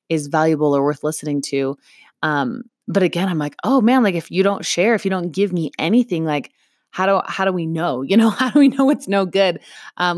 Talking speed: 240 wpm